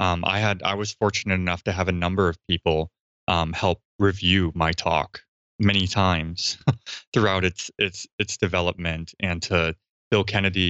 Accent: American